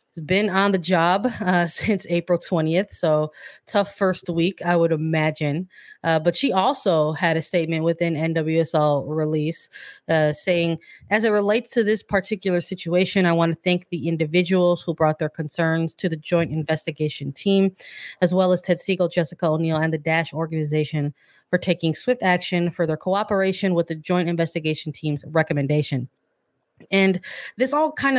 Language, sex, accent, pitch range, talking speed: English, female, American, 160-190 Hz, 165 wpm